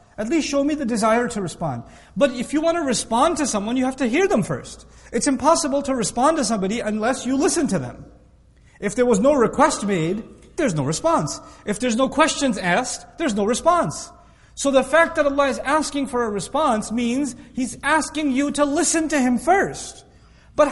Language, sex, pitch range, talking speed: English, male, 220-290 Hz, 205 wpm